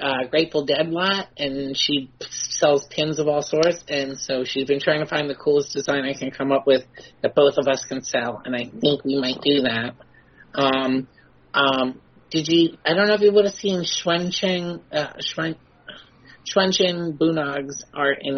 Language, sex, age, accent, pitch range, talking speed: English, male, 30-49, American, 135-155 Hz, 195 wpm